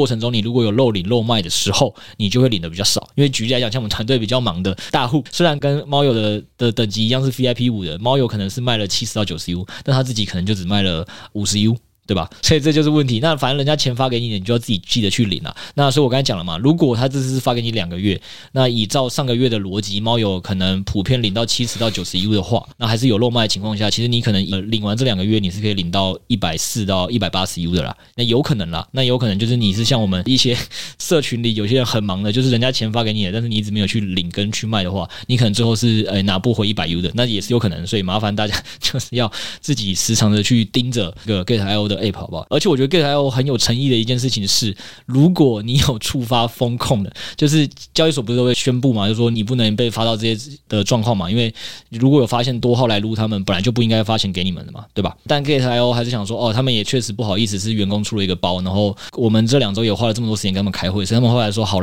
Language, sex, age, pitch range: Chinese, male, 20-39, 105-125 Hz